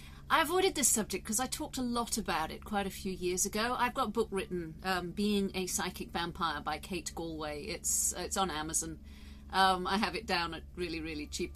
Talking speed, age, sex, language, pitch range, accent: 220 wpm, 40-59, female, English, 170-230 Hz, British